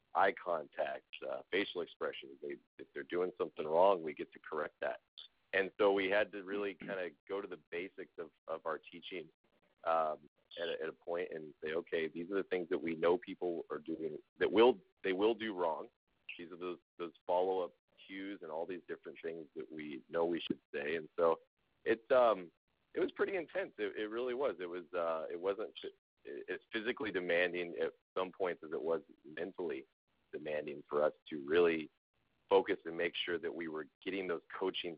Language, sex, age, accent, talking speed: English, male, 40-59, American, 200 wpm